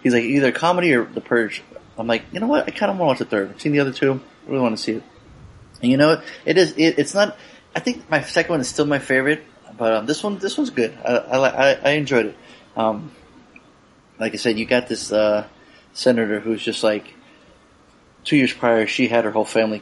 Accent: American